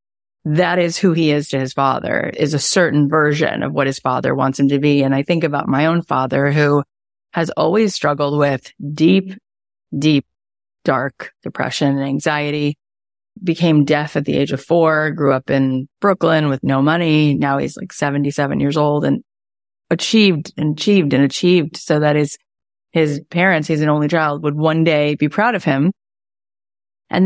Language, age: English, 30-49